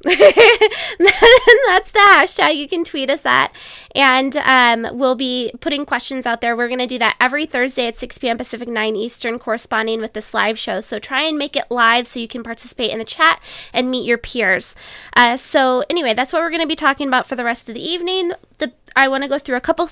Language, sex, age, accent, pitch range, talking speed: English, female, 10-29, American, 220-270 Hz, 230 wpm